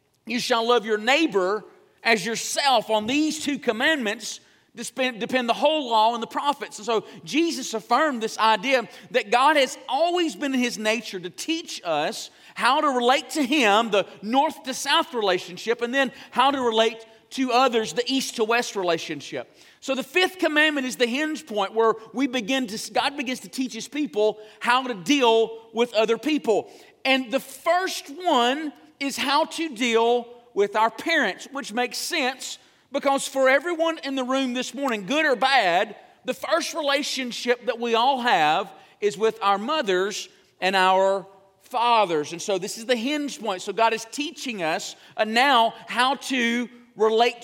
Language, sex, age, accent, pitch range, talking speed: English, male, 40-59, American, 215-275 Hz, 170 wpm